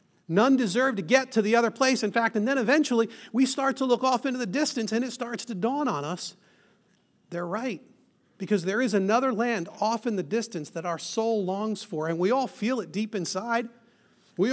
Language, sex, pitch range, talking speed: English, male, 195-250 Hz, 215 wpm